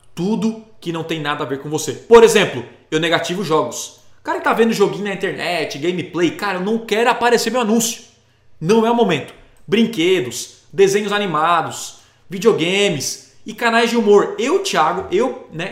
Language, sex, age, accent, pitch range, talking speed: Portuguese, male, 20-39, Brazilian, 155-235 Hz, 175 wpm